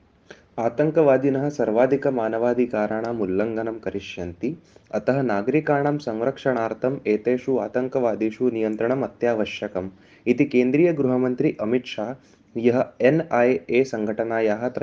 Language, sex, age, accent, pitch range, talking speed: Hindi, male, 20-39, native, 110-135 Hz, 60 wpm